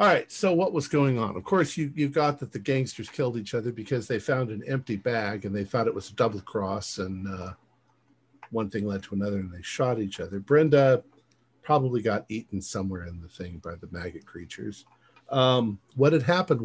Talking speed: 215 wpm